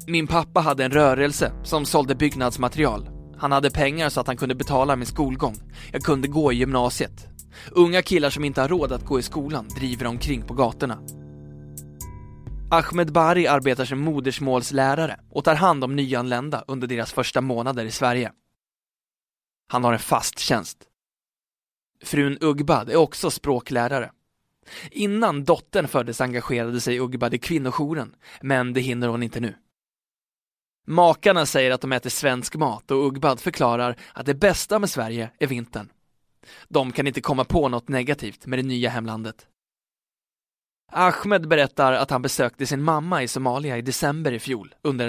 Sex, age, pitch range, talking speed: male, 20-39, 125-150 Hz, 160 wpm